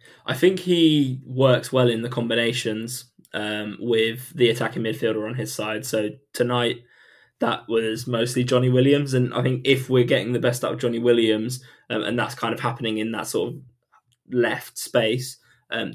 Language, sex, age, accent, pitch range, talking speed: English, male, 20-39, British, 115-125 Hz, 180 wpm